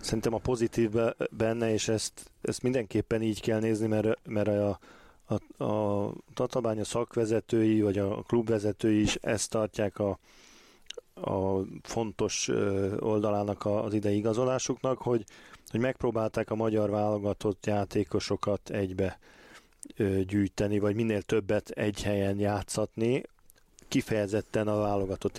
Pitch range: 105-115 Hz